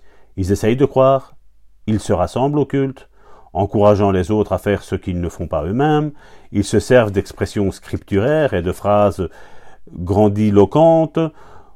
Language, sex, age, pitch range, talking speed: French, male, 50-69, 100-130 Hz, 150 wpm